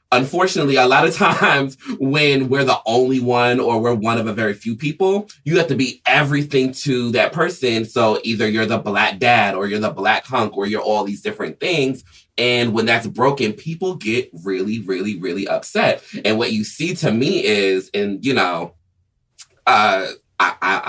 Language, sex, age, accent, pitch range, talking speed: English, male, 30-49, American, 100-135 Hz, 185 wpm